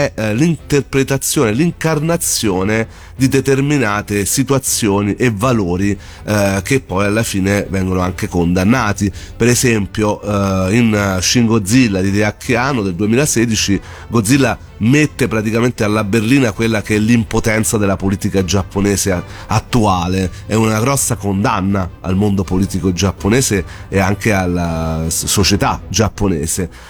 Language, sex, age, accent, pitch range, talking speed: Italian, male, 30-49, native, 95-115 Hz, 115 wpm